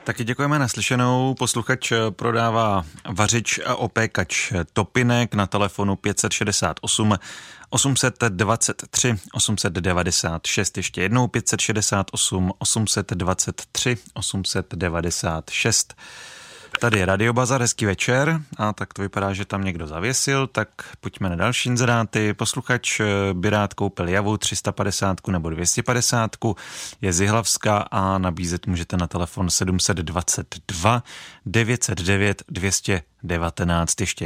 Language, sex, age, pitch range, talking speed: Czech, male, 30-49, 95-115 Hz, 100 wpm